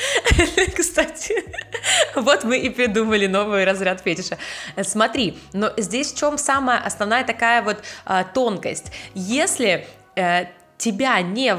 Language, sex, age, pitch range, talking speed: Russian, female, 20-39, 175-230 Hz, 110 wpm